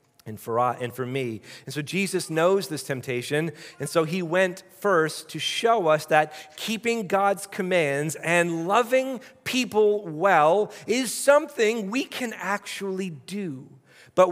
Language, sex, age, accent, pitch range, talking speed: English, male, 40-59, American, 140-200 Hz, 145 wpm